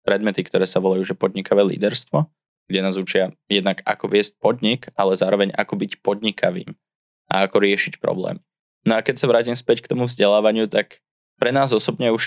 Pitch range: 100-115 Hz